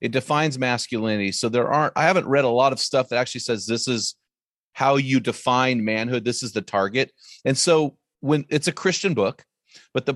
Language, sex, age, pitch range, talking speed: English, male, 40-59, 125-150 Hz, 205 wpm